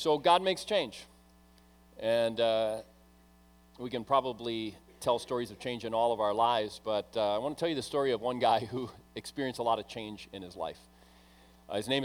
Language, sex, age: English, male, 40-59